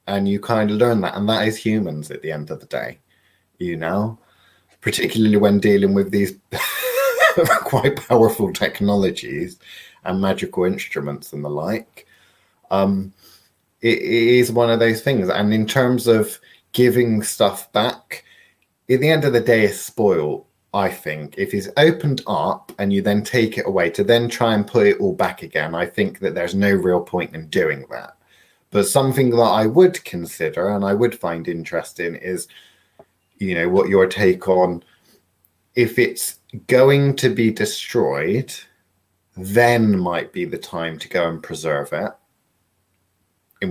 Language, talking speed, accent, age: English, 165 wpm, British, 30-49